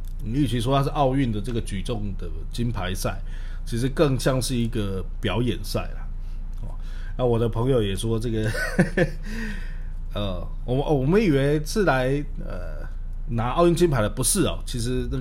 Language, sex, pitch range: Chinese, male, 80-125 Hz